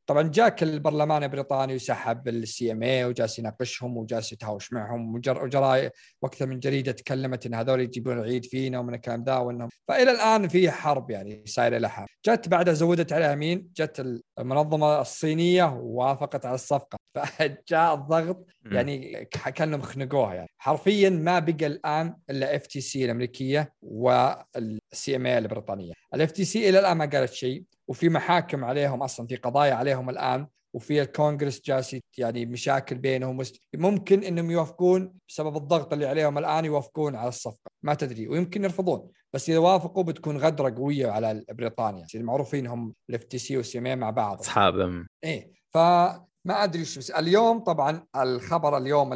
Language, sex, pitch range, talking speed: Arabic, male, 120-160 Hz, 155 wpm